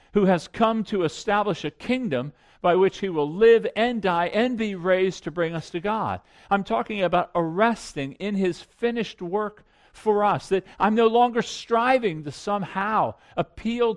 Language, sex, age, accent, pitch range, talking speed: English, male, 50-69, American, 175-245 Hz, 175 wpm